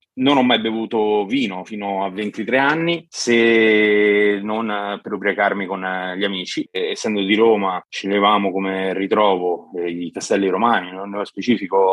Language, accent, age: Italian, native, 30-49